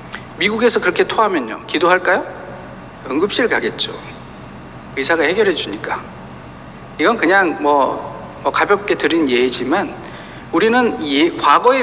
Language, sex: Korean, male